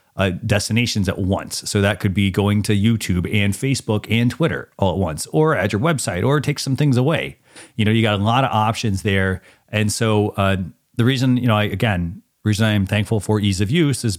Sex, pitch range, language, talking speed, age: male, 100-125 Hz, English, 230 wpm, 30-49